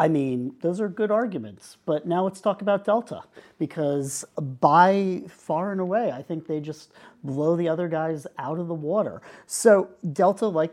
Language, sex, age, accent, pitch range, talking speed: English, male, 40-59, American, 140-175 Hz, 180 wpm